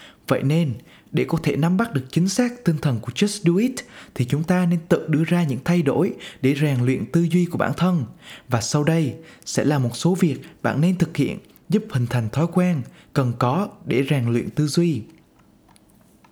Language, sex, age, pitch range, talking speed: Vietnamese, male, 20-39, 135-175 Hz, 215 wpm